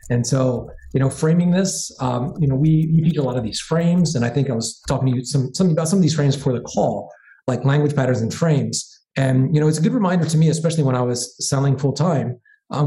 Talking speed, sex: 265 wpm, male